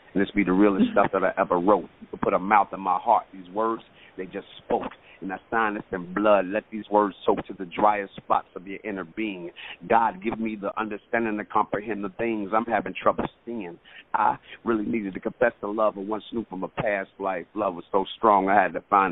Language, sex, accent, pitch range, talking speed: English, male, American, 100-115 Hz, 235 wpm